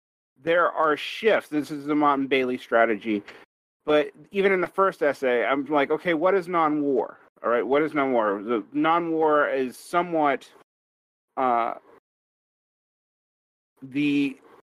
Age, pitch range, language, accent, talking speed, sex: 30-49, 125-155 Hz, English, American, 130 wpm, male